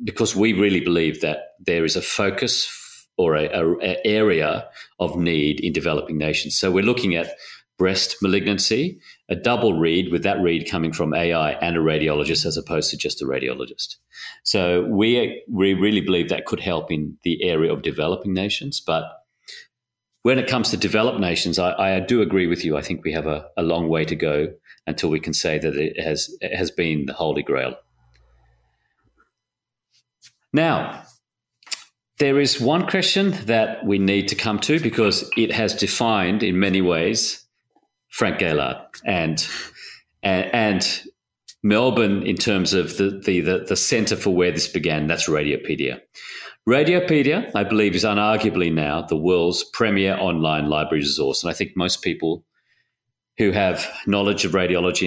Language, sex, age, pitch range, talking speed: English, male, 40-59, 80-110 Hz, 165 wpm